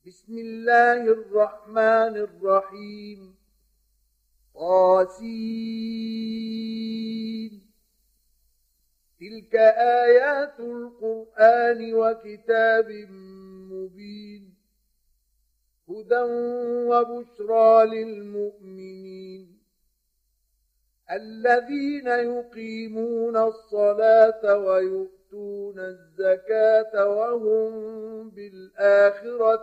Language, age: Arabic, 50-69